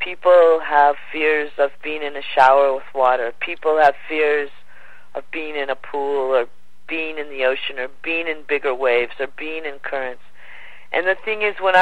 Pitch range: 140-165 Hz